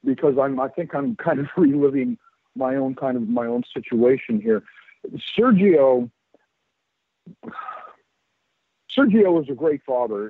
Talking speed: 130 wpm